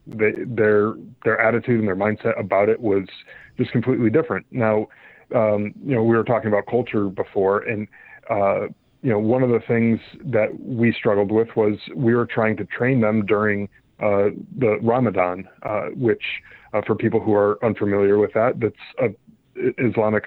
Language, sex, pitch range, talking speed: English, male, 105-115 Hz, 175 wpm